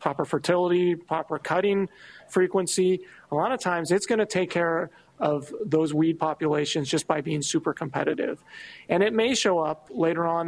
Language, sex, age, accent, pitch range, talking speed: English, male, 40-59, American, 155-190 Hz, 170 wpm